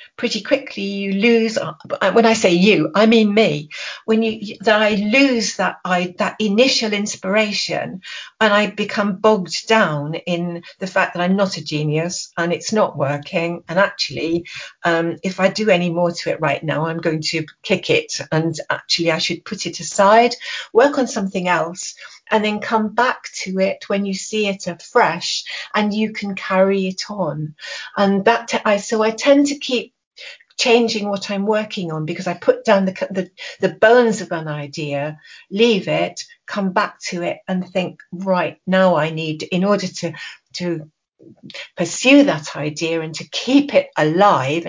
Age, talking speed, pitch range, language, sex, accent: 50-69, 175 wpm, 170-215 Hz, English, female, British